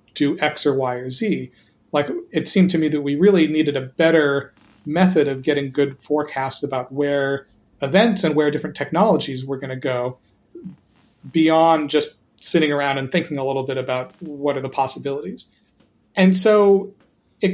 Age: 40-59